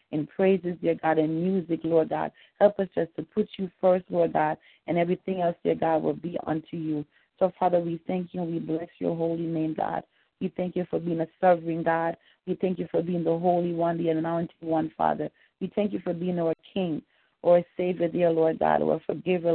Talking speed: 225 wpm